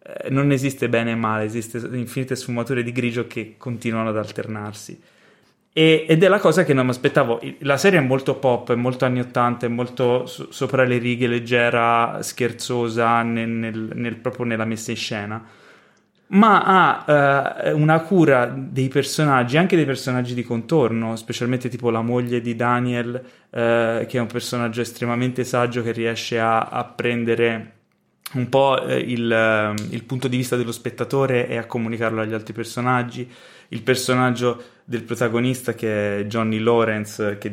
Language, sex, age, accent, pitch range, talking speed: Italian, male, 20-39, native, 115-130 Hz, 160 wpm